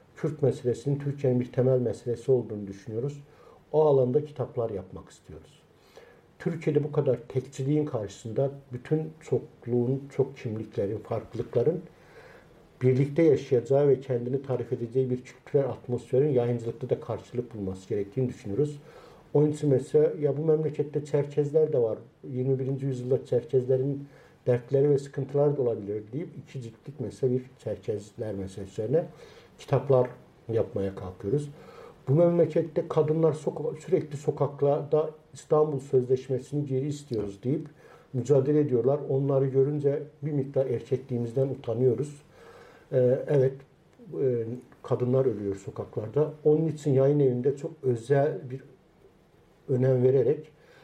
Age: 60-79